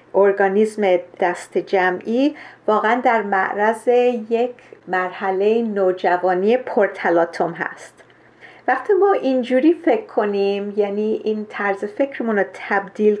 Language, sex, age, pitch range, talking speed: Persian, female, 40-59, 205-260 Hz, 100 wpm